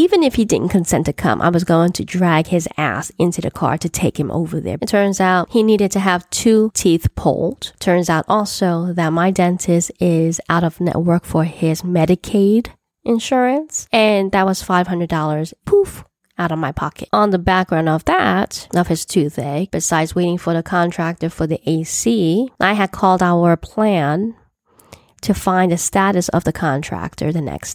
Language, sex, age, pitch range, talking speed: English, female, 10-29, 160-195 Hz, 185 wpm